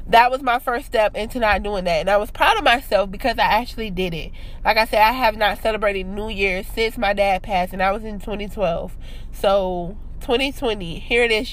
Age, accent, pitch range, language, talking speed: 20-39, American, 200-240 Hz, English, 225 wpm